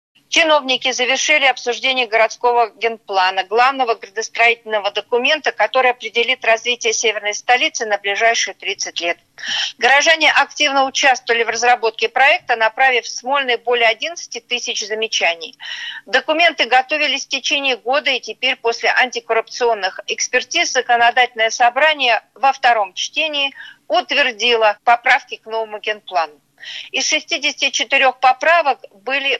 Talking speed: 110 wpm